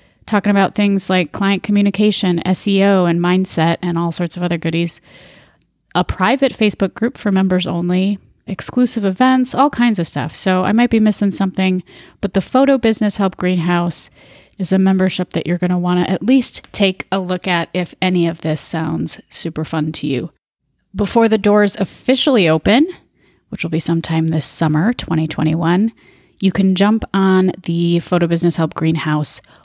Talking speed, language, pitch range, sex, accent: 170 wpm, English, 170-210 Hz, female, American